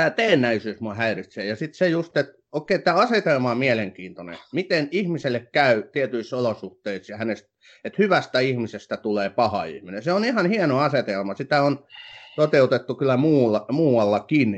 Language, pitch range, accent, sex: Finnish, 105-140 Hz, native, male